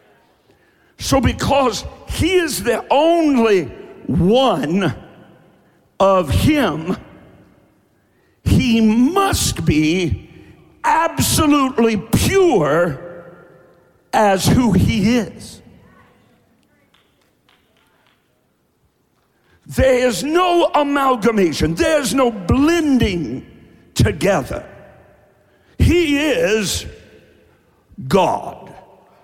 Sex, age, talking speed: male, 60-79, 60 wpm